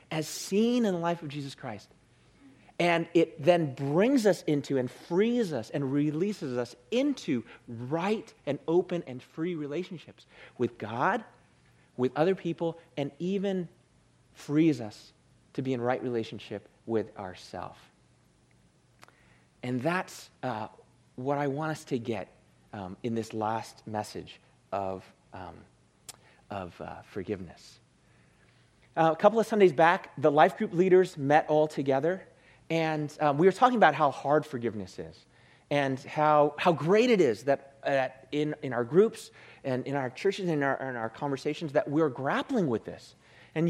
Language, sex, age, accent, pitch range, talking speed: English, male, 40-59, American, 120-180 Hz, 155 wpm